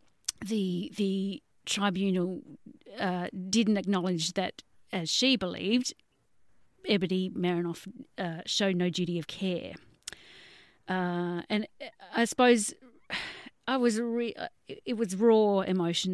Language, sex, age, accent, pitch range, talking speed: English, female, 40-59, Australian, 175-210 Hz, 110 wpm